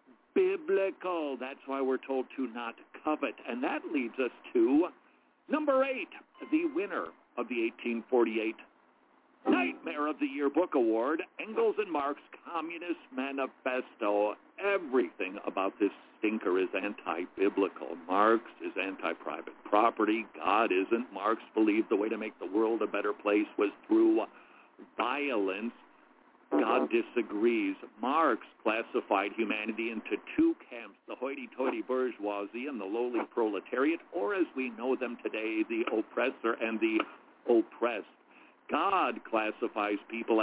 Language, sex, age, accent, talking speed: English, male, 50-69, American, 130 wpm